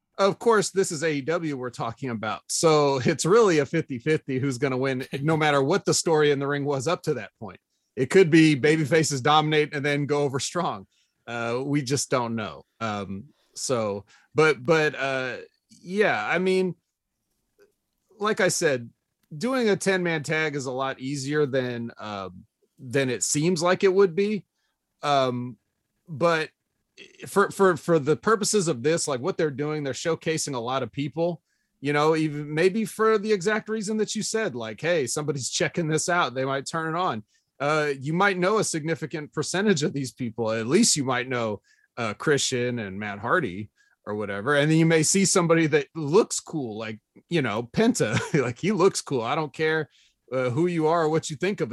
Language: English